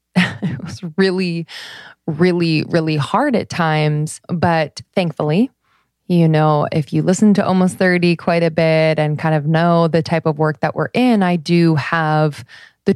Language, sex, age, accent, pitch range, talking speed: English, female, 20-39, American, 155-185 Hz, 165 wpm